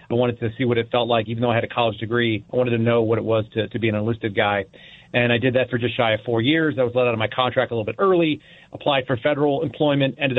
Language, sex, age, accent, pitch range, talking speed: English, male, 40-59, American, 115-145 Hz, 310 wpm